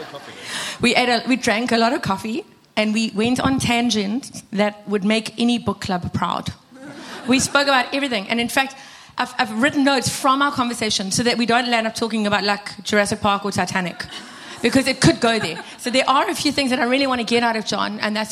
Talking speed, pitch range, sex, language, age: 230 wpm, 200-240 Hz, female, English, 30-49